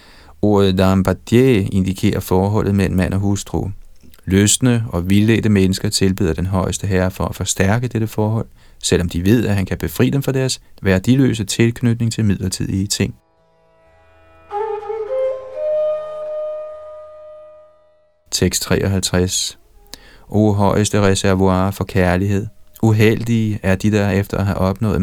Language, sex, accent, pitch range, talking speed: Danish, male, native, 95-115 Hz, 120 wpm